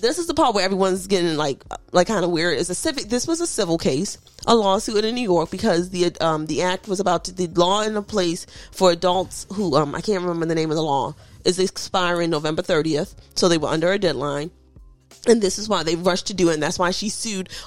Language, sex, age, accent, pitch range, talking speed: English, female, 20-39, American, 175-230 Hz, 250 wpm